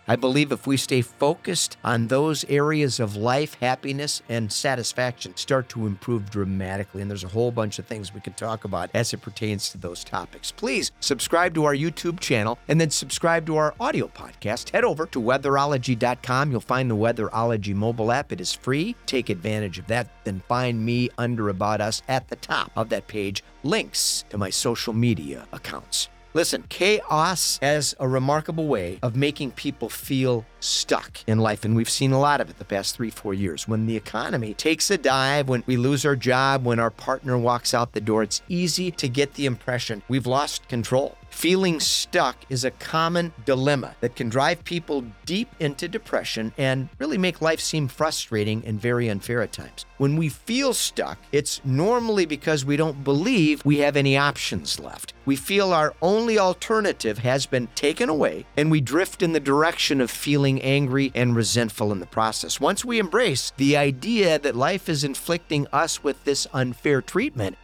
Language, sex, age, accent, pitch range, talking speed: English, male, 40-59, American, 115-150 Hz, 185 wpm